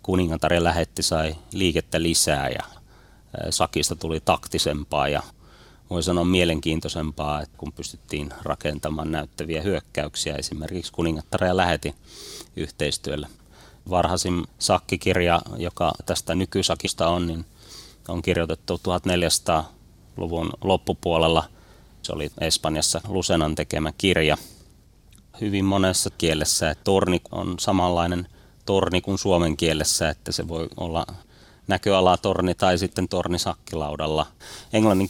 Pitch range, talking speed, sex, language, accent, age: 80-95 Hz, 100 wpm, male, Finnish, native, 30-49